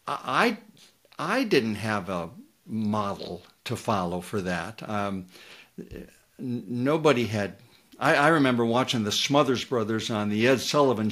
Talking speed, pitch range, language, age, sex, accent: 130 wpm, 100-120 Hz, English, 60-79, male, American